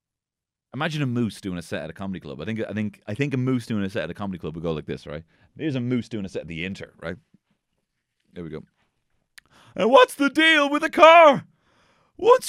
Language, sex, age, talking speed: English, male, 30-49, 250 wpm